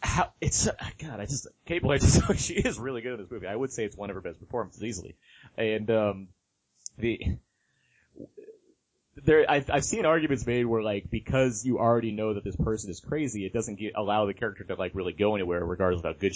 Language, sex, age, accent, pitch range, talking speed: English, male, 30-49, American, 95-125 Hz, 225 wpm